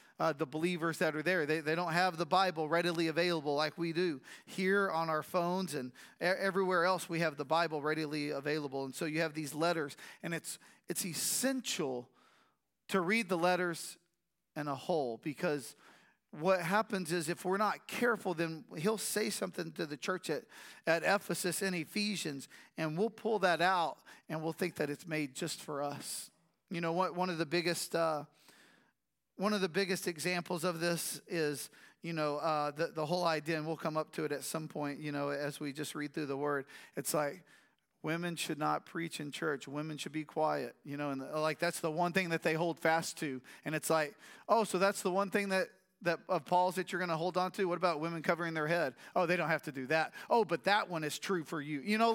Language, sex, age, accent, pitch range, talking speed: English, male, 40-59, American, 155-190 Hz, 220 wpm